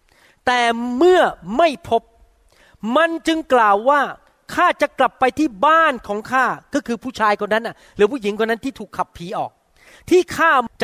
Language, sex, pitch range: Thai, male, 205-285 Hz